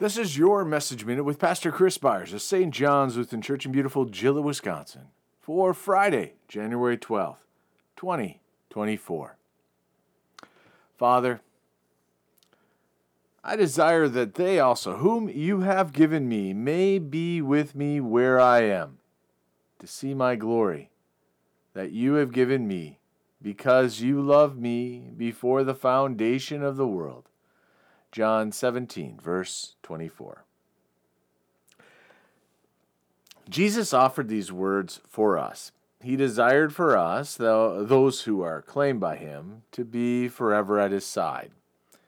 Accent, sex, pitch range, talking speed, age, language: American, male, 95-140 Hz, 125 wpm, 40-59, English